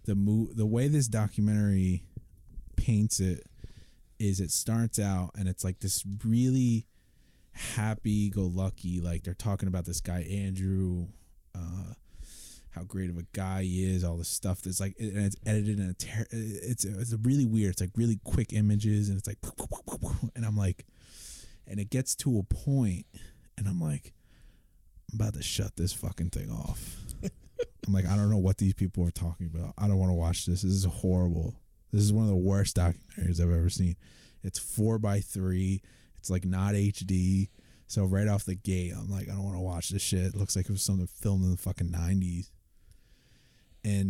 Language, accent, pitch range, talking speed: English, American, 90-105 Hz, 195 wpm